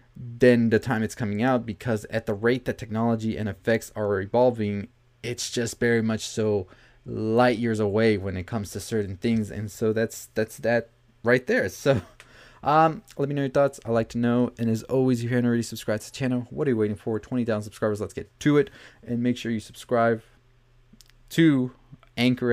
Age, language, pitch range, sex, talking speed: 20-39, English, 110-125 Hz, male, 205 wpm